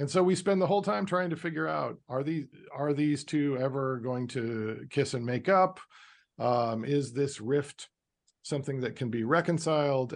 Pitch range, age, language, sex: 115-160 Hz, 40-59, English, male